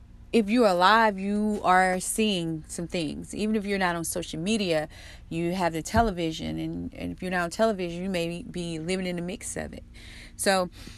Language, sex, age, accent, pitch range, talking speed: English, female, 30-49, American, 165-205 Hz, 195 wpm